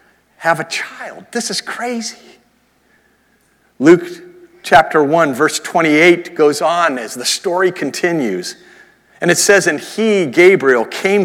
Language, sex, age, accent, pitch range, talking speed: English, male, 50-69, American, 155-220 Hz, 130 wpm